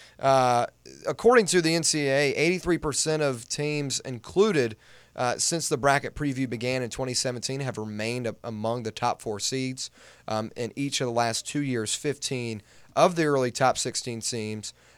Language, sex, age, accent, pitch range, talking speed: English, male, 30-49, American, 115-140 Hz, 150 wpm